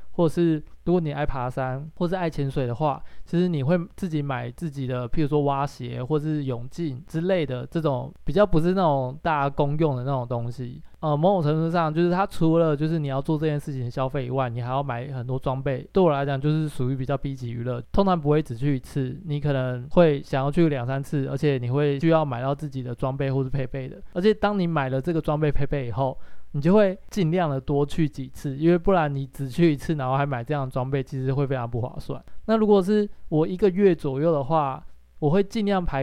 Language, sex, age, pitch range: Chinese, male, 20-39, 135-160 Hz